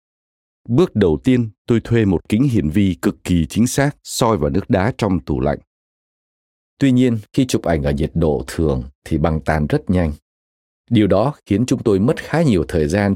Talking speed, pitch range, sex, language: 200 wpm, 75-120 Hz, male, Vietnamese